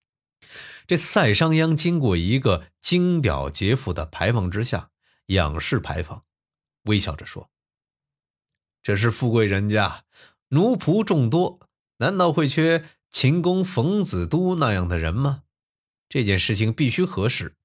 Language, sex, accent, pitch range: Chinese, male, native, 90-140 Hz